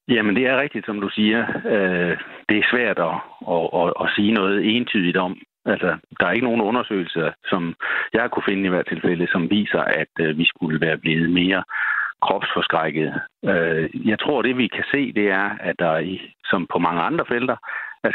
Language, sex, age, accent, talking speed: Danish, male, 60-79, native, 180 wpm